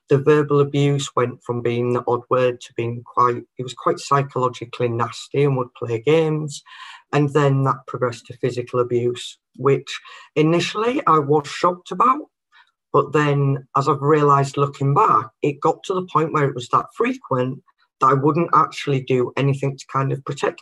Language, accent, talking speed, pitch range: English, British, 180 wpm, 125-155 Hz